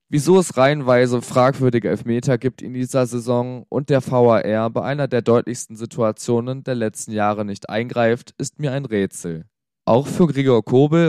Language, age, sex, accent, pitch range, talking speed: German, 20-39, male, German, 110-135 Hz, 160 wpm